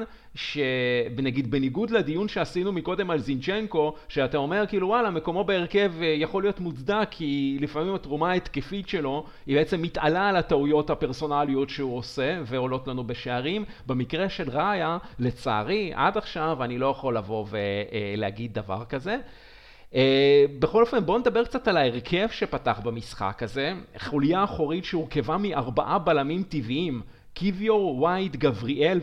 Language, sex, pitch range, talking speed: Hebrew, male, 135-195 Hz, 135 wpm